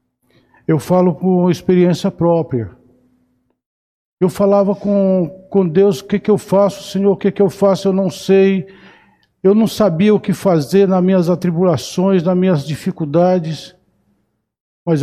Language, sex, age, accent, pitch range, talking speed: Portuguese, male, 60-79, Brazilian, 135-190 Hz, 150 wpm